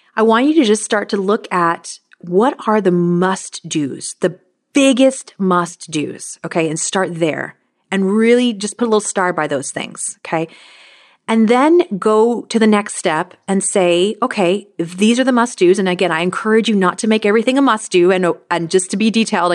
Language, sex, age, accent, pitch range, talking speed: English, female, 30-49, American, 175-230 Hz, 195 wpm